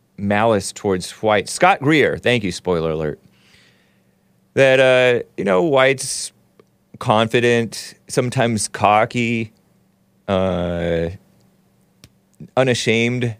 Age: 30-49